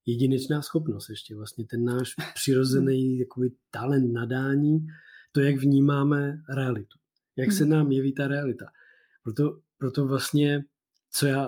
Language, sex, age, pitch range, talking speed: Czech, male, 20-39, 125-155 Hz, 125 wpm